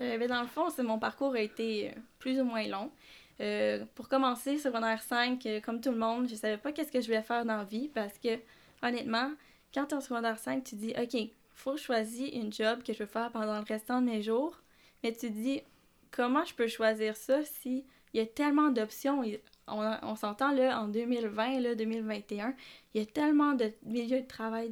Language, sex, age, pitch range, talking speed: French, female, 10-29, 220-255 Hz, 225 wpm